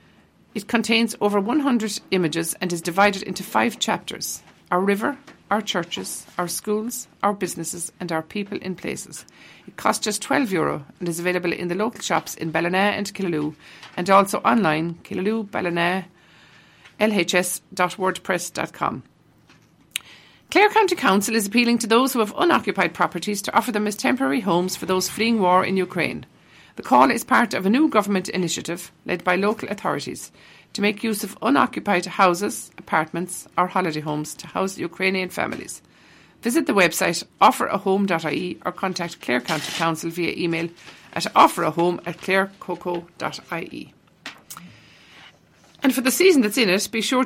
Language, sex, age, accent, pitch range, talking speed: English, female, 50-69, Irish, 175-225 Hz, 150 wpm